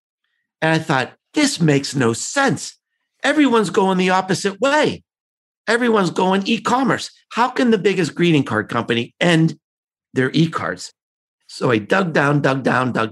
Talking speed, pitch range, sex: 145 wpm, 150-235 Hz, male